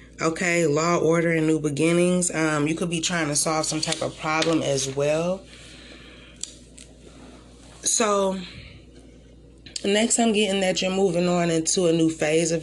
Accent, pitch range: American, 150-185 Hz